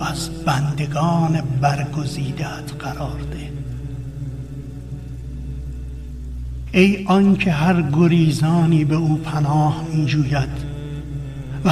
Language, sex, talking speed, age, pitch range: Persian, male, 70 wpm, 60-79, 140-170 Hz